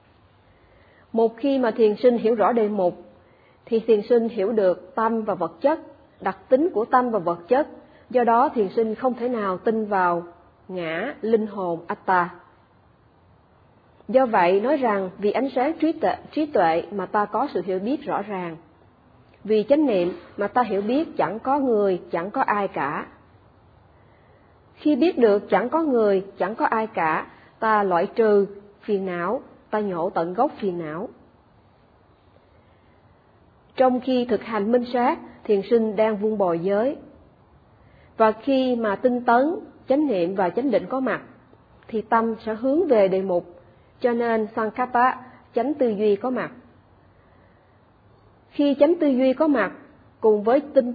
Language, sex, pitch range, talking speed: Vietnamese, female, 185-255 Hz, 165 wpm